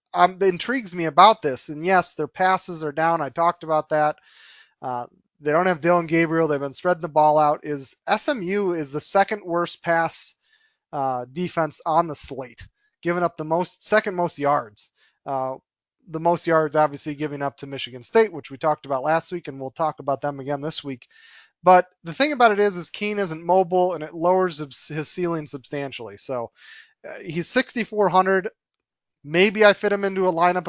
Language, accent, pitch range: English, American, 150-185 Hz